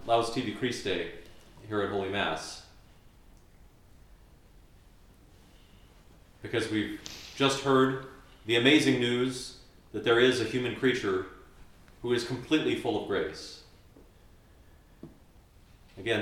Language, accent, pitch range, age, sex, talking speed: English, American, 105-130 Hz, 40-59, male, 100 wpm